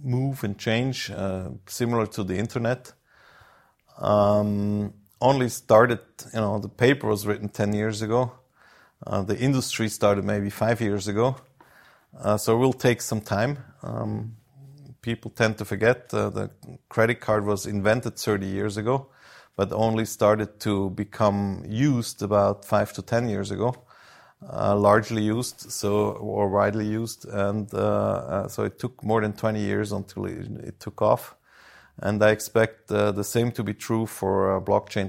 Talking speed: 160 wpm